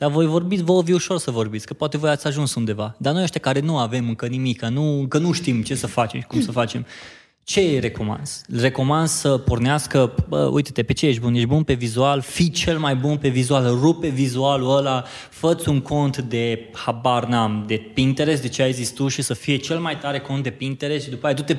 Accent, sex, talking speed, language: native, male, 230 wpm, Romanian